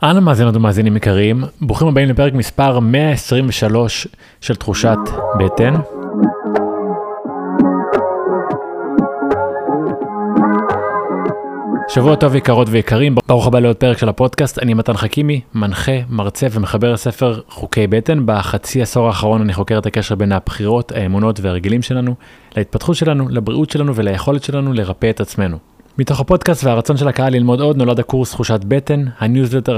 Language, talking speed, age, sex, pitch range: Hebrew, 130 wpm, 30-49, male, 105-135 Hz